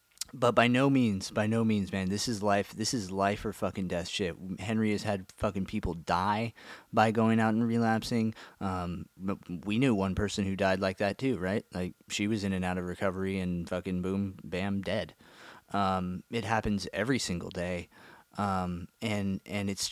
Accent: American